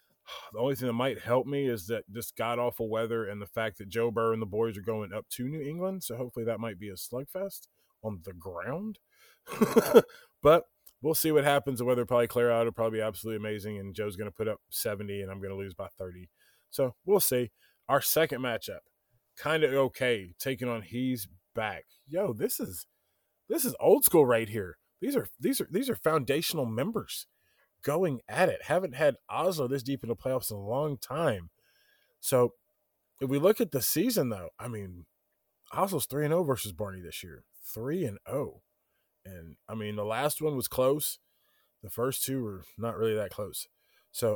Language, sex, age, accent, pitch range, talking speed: English, male, 20-39, American, 110-140 Hz, 200 wpm